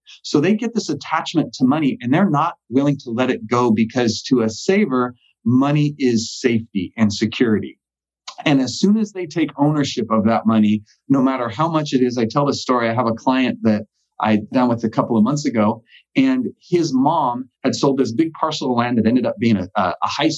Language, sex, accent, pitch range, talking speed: English, male, American, 110-150 Hz, 220 wpm